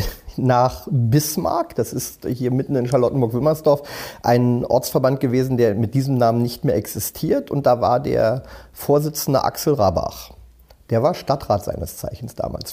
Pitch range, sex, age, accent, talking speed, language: 120-155 Hz, male, 40-59, German, 145 wpm, German